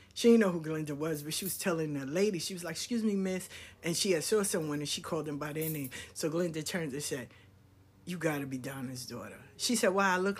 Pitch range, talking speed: 150-235 Hz, 270 wpm